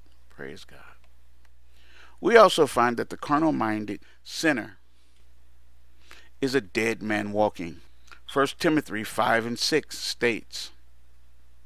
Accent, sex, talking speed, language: American, male, 105 wpm, English